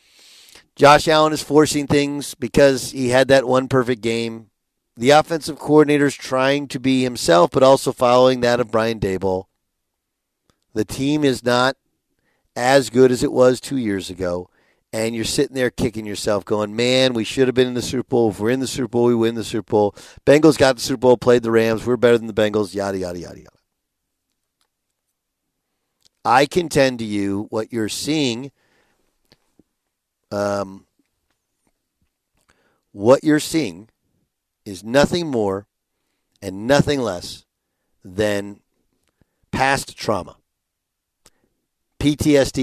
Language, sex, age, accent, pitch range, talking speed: English, male, 50-69, American, 110-140 Hz, 145 wpm